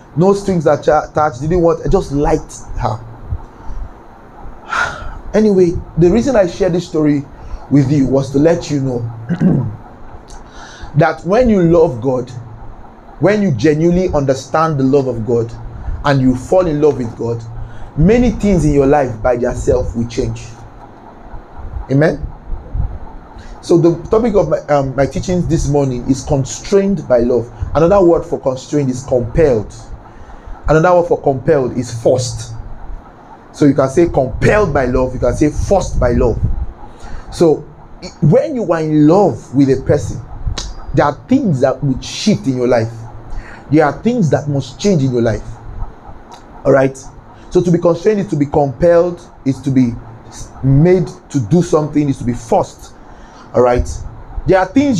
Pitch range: 120-165 Hz